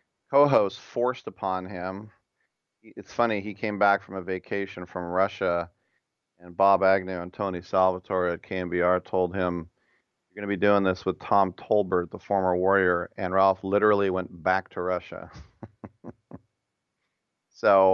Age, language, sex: 40-59, English, male